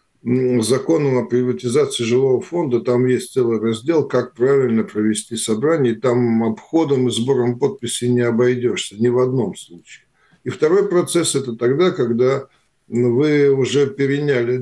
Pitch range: 120-145 Hz